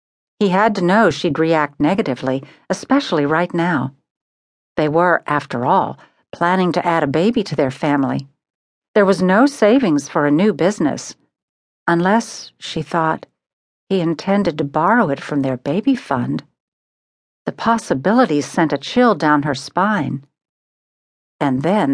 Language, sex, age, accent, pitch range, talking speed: English, female, 60-79, American, 145-215 Hz, 140 wpm